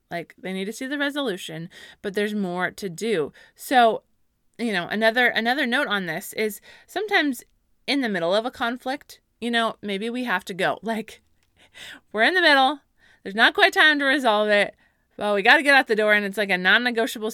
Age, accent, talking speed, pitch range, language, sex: 20-39, American, 210 wpm, 200-250 Hz, English, female